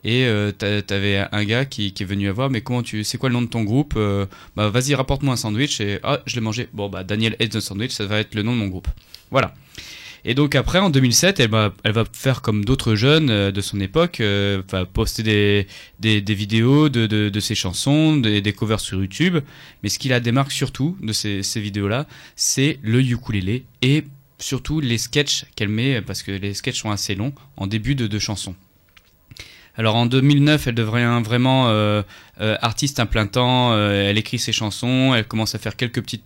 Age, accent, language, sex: 20-39, French, French, male